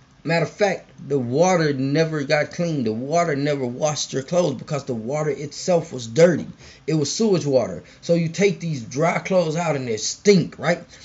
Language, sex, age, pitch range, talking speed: English, male, 20-39, 130-165 Hz, 190 wpm